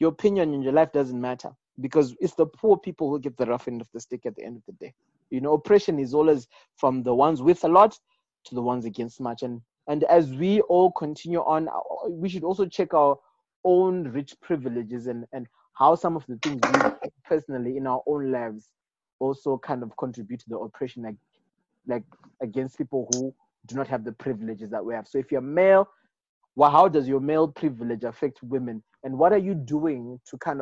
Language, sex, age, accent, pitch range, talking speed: English, male, 20-39, South African, 125-165 Hz, 215 wpm